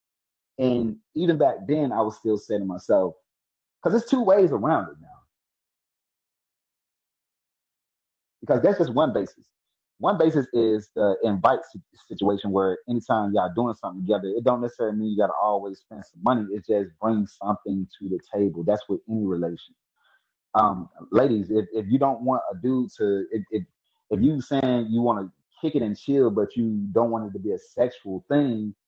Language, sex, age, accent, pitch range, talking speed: English, male, 30-49, American, 100-155 Hz, 185 wpm